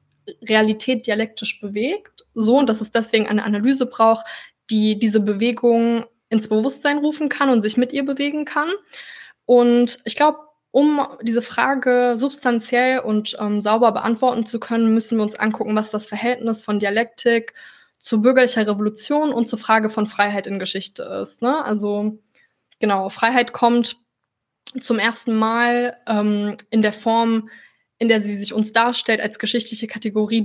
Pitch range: 215-245 Hz